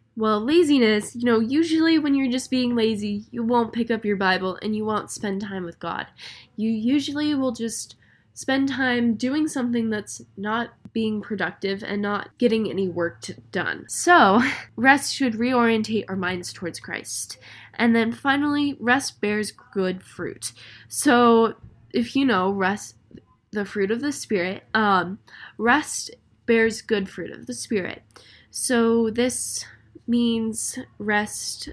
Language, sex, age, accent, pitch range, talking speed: English, female, 10-29, American, 190-245 Hz, 150 wpm